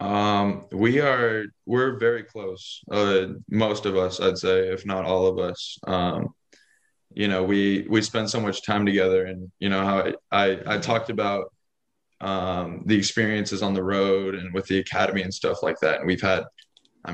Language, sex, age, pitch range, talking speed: English, male, 20-39, 95-105 Hz, 190 wpm